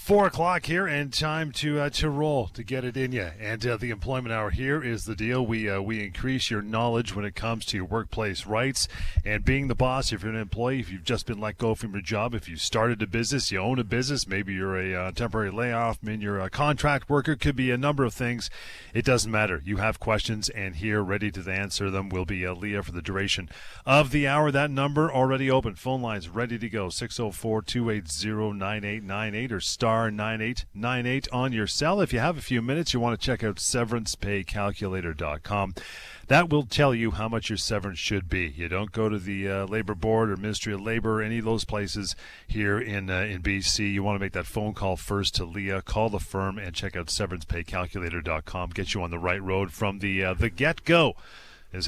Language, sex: English, male